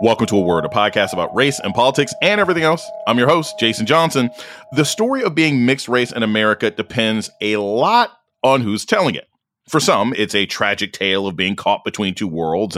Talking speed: 210 wpm